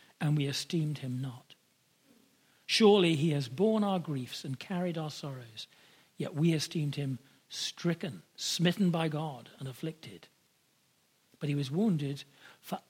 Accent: British